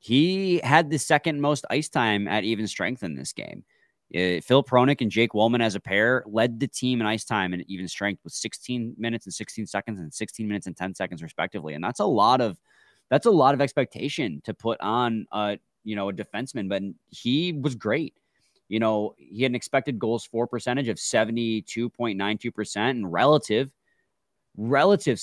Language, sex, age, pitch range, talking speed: English, male, 20-39, 105-135 Hz, 190 wpm